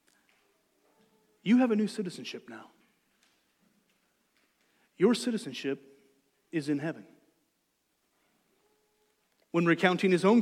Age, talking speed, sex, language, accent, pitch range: 40-59, 85 wpm, male, English, American, 155-225 Hz